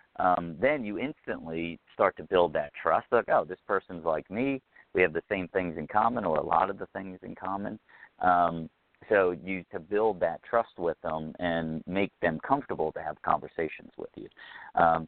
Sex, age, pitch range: male, 50-69, 85-105 Hz